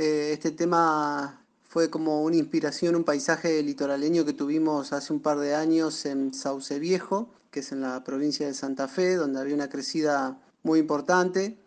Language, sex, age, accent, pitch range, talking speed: Spanish, male, 30-49, Argentinian, 150-180 Hz, 170 wpm